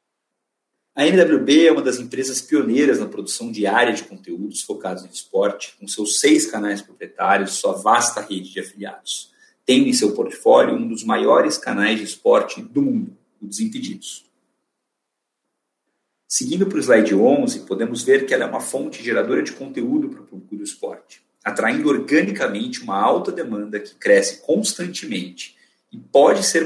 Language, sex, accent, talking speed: Portuguese, male, Brazilian, 160 wpm